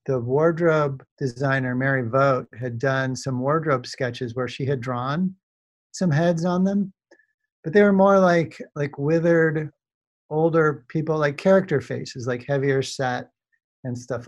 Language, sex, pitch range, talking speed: English, male, 130-160 Hz, 145 wpm